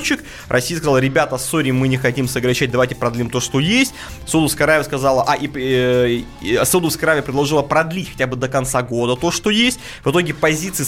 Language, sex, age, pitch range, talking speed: Russian, male, 20-39, 125-155 Hz, 200 wpm